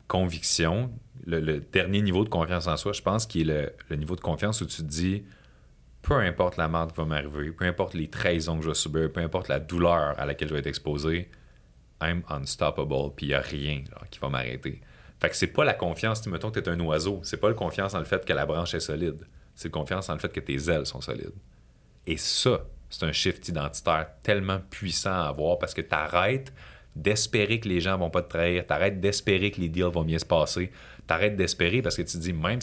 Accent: Canadian